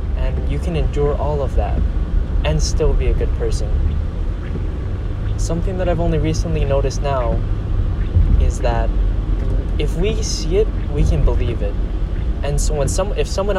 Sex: male